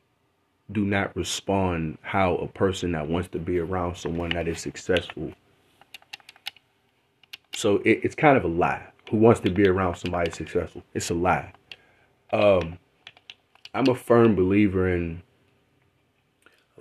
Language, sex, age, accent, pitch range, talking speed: English, male, 30-49, American, 90-110 Hz, 135 wpm